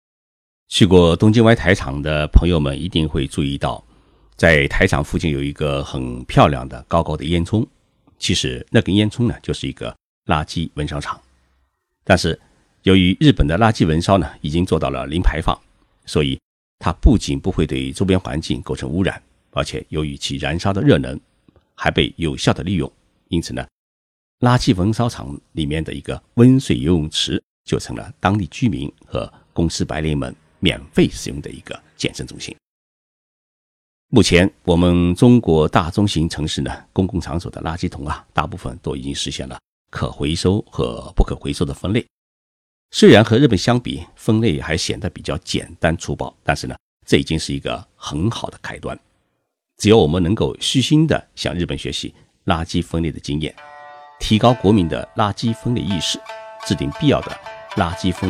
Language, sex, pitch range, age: Chinese, male, 70-105 Hz, 50-69